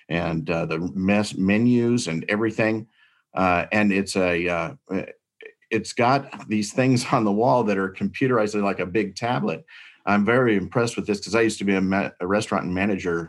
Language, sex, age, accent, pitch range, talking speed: English, male, 50-69, American, 90-110 Hz, 185 wpm